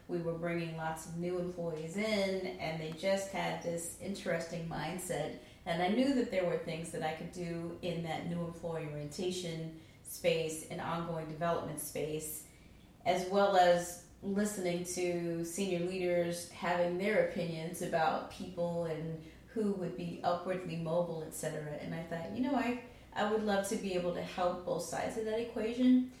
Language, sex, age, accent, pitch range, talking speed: English, female, 30-49, American, 170-185 Hz, 170 wpm